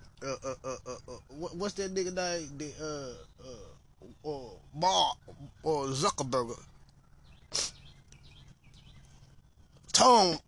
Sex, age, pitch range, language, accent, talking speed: male, 20-39, 135-200 Hz, English, American, 115 wpm